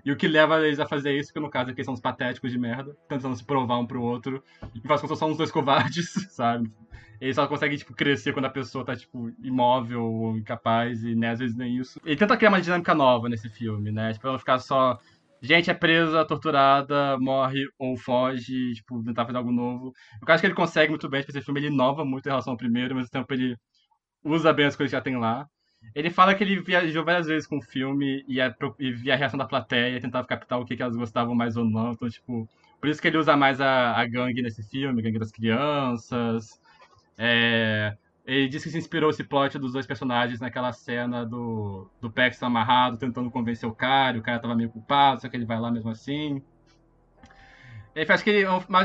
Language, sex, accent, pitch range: Portuguese, male, Brazilian, 120-145 Hz